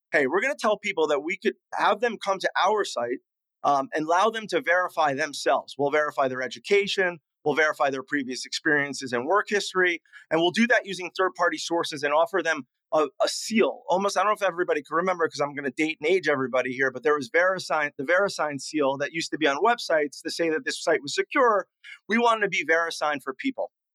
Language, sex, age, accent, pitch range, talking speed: English, male, 30-49, American, 150-195 Hz, 225 wpm